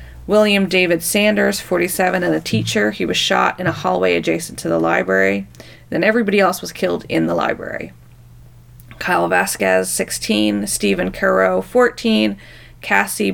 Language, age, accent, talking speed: English, 30-49, American, 145 wpm